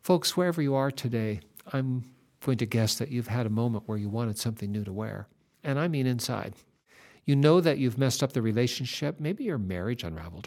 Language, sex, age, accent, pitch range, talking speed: English, male, 50-69, American, 115-155 Hz, 210 wpm